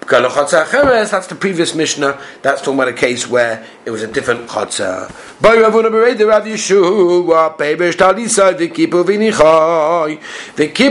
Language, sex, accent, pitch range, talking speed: English, male, British, 155-220 Hz, 100 wpm